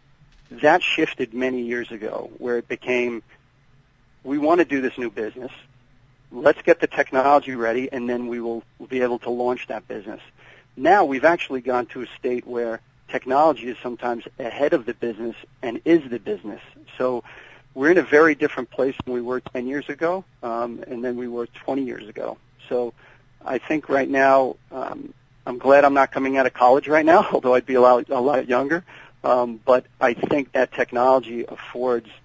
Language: English